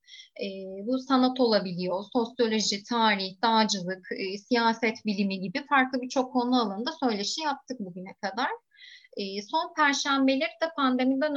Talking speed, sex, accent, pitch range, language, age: 125 wpm, female, native, 205-265 Hz, Turkish, 30-49